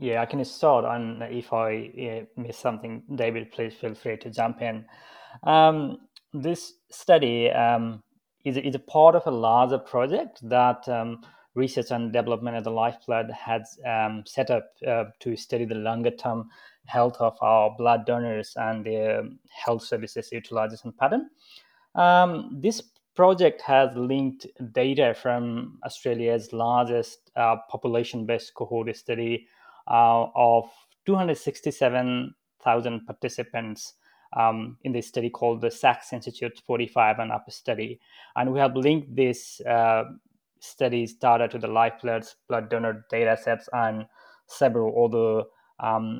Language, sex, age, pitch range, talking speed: English, male, 20-39, 115-140 Hz, 135 wpm